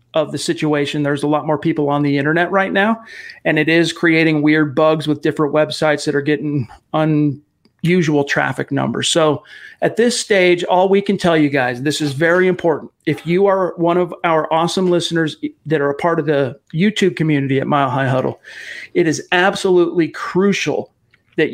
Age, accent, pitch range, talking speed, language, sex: 40-59, American, 145-175 Hz, 185 wpm, English, male